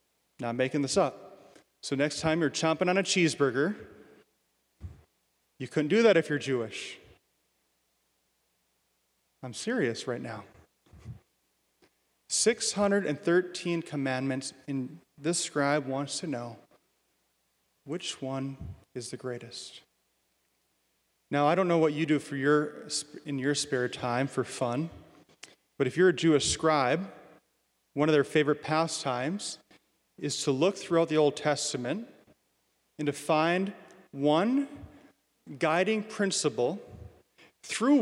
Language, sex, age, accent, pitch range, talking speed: English, male, 30-49, American, 140-200 Hz, 120 wpm